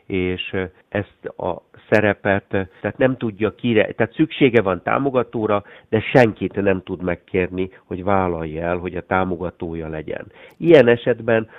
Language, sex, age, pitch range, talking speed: Hungarian, male, 60-79, 95-115 Hz, 135 wpm